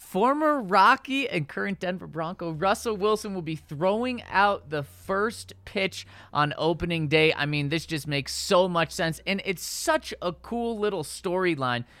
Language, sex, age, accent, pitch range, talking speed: English, male, 20-39, American, 135-185 Hz, 165 wpm